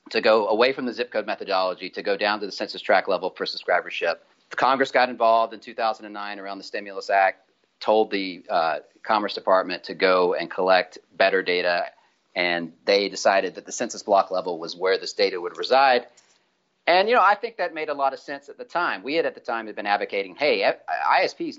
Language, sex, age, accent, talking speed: English, male, 40-59, American, 215 wpm